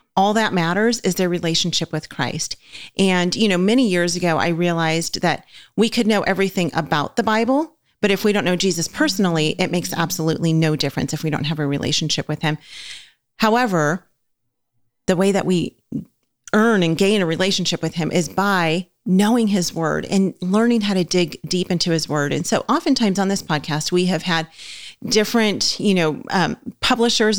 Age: 40-59